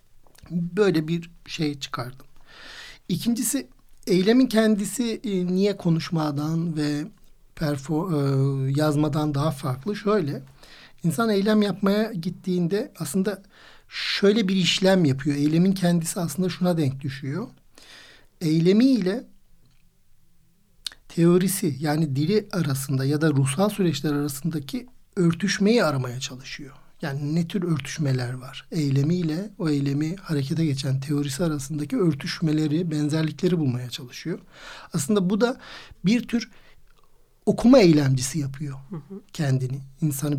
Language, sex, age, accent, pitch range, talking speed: Turkish, male, 60-79, native, 145-190 Hz, 105 wpm